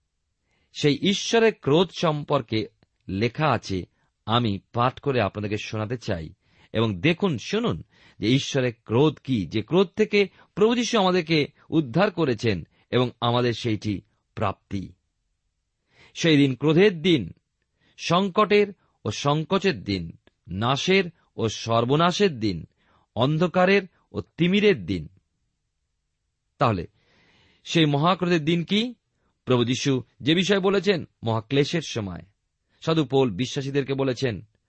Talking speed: 105 wpm